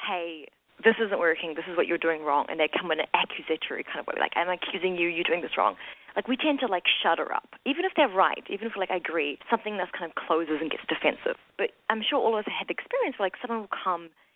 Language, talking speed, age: English, 275 wpm, 20-39